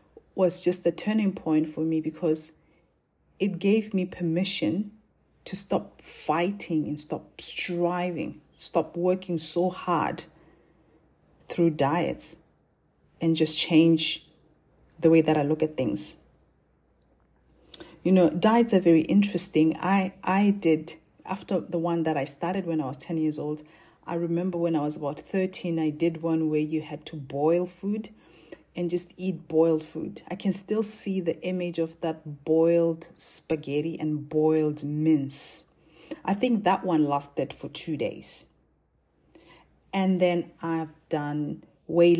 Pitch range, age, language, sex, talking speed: 155-180 Hz, 40-59, English, female, 145 wpm